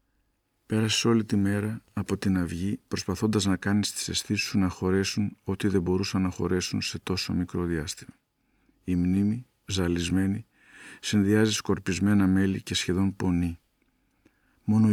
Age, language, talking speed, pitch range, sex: 50-69, Greek, 135 wpm, 90-105 Hz, male